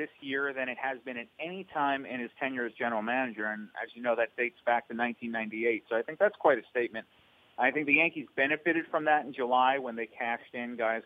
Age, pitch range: 40-59, 115-150 Hz